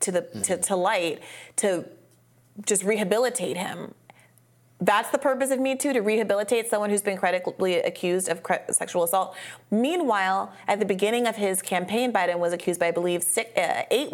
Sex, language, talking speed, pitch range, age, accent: female, English, 175 wpm, 180-220 Hz, 30-49, American